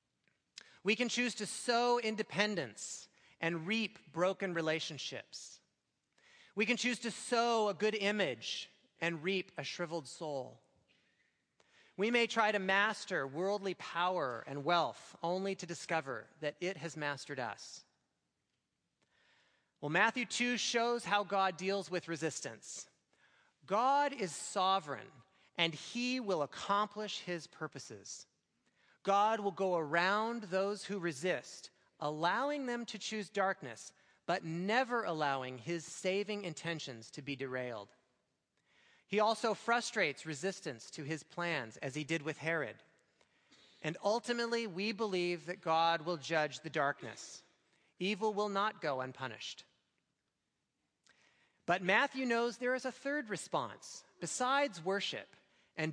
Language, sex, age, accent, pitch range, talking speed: English, male, 30-49, American, 160-215 Hz, 125 wpm